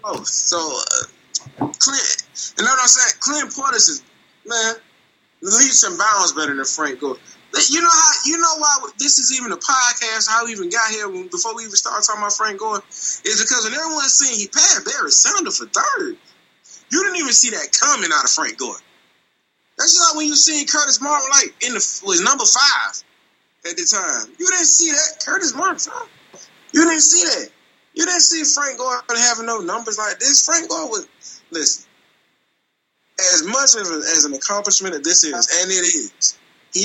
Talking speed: 195 wpm